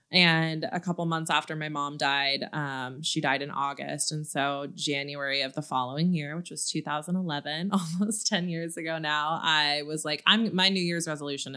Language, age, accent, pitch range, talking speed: English, 20-39, American, 150-180 Hz, 185 wpm